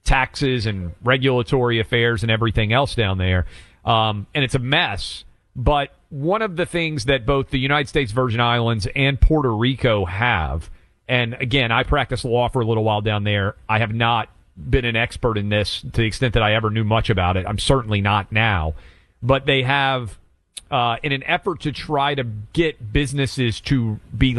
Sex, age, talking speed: male, 40-59, 190 wpm